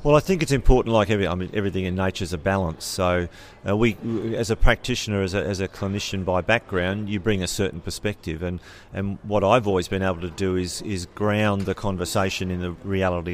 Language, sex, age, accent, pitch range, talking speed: English, male, 40-59, Australian, 90-105 Hz, 225 wpm